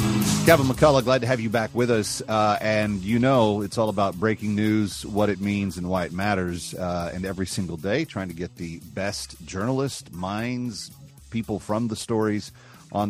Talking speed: 195 wpm